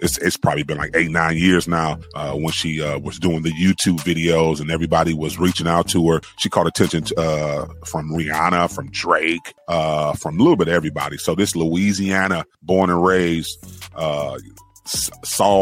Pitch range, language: 80-95 Hz, English